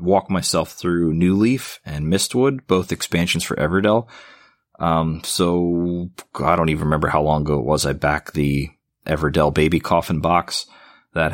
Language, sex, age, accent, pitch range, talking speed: English, male, 30-49, American, 75-95 Hz, 160 wpm